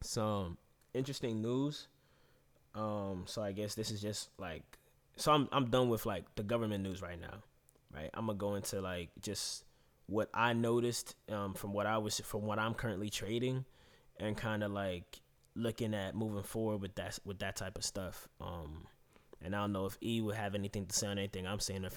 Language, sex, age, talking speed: English, male, 20-39, 205 wpm